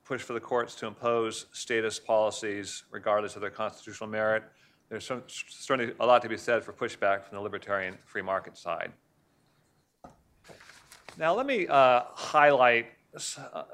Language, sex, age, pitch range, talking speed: English, male, 40-59, 110-135 Hz, 145 wpm